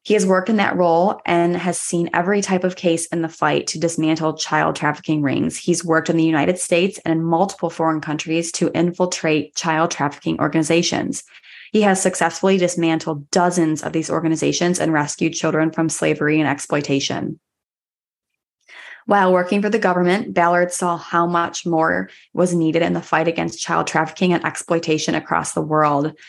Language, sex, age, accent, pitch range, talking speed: English, female, 20-39, American, 160-180 Hz, 170 wpm